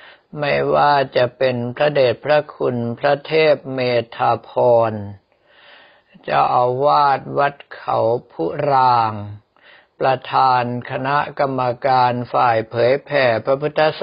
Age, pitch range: 60-79, 120-145 Hz